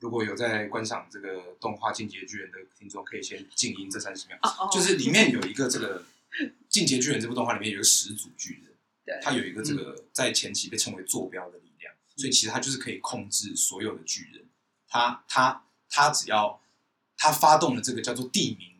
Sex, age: male, 20-39